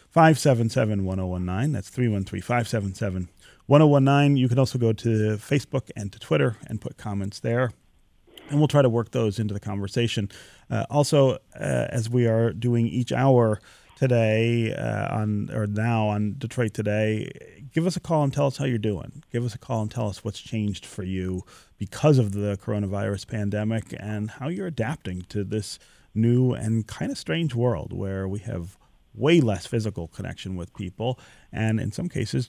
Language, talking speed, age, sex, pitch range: English, 175 wpm, 30-49, male, 105-130 Hz